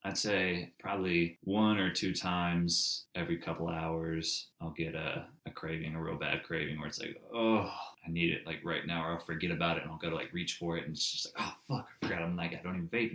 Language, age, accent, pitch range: English, 20-39, American, 80-90 Hz